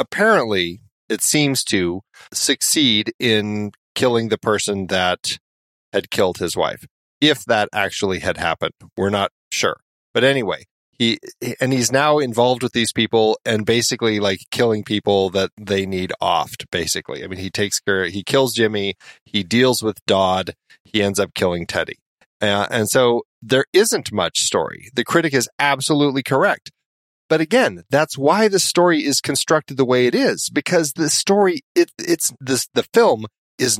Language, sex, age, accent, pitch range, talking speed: English, male, 40-59, American, 105-135 Hz, 165 wpm